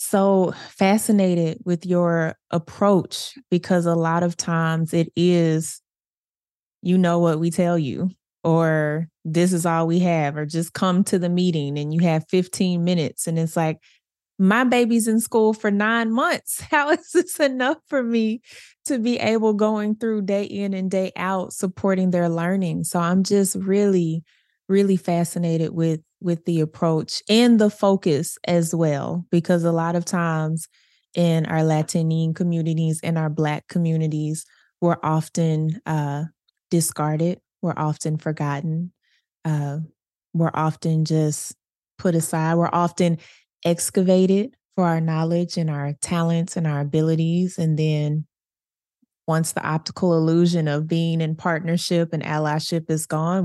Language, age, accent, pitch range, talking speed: English, 20-39, American, 160-190 Hz, 145 wpm